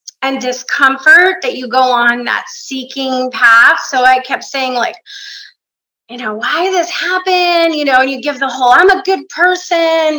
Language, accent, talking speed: English, American, 185 wpm